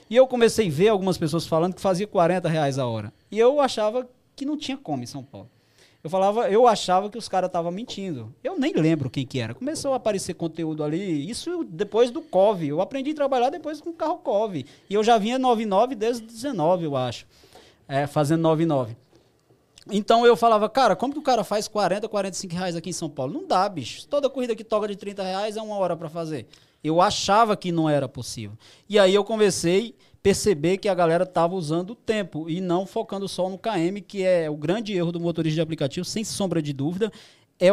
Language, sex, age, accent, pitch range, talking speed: Portuguese, male, 20-39, Brazilian, 165-215 Hz, 220 wpm